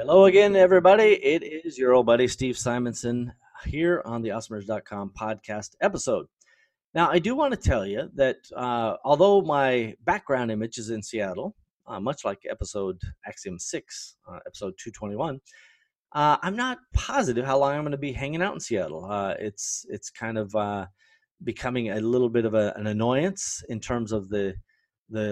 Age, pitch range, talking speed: 30-49, 110-165 Hz, 175 wpm